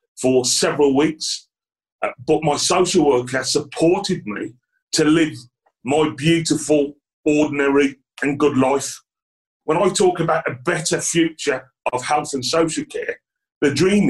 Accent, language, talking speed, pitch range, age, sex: British, English, 135 wpm, 135-170 Hz, 40-59, male